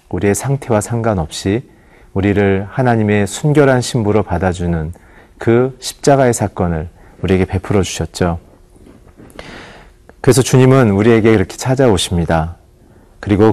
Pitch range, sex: 90-115 Hz, male